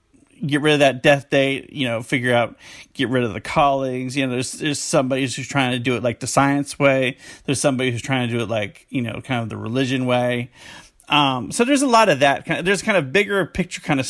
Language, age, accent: English, 30-49, American